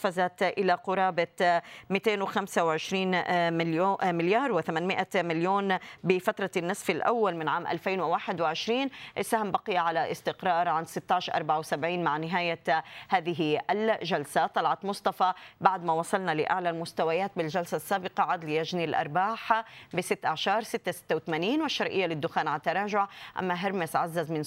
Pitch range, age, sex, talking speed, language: 165-195 Hz, 30-49, female, 110 wpm, Arabic